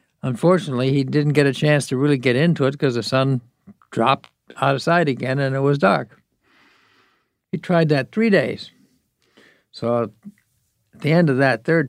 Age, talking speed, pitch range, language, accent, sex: 60-79, 175 wpm, 120-150 Hz, English, American, male